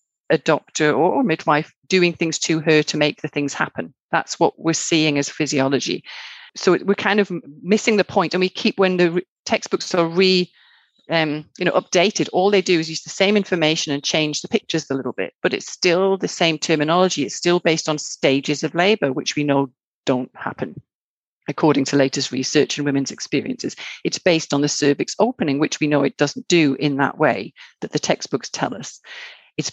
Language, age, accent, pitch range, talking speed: English, 40-59, British, 145-175 Hz, 195 wpm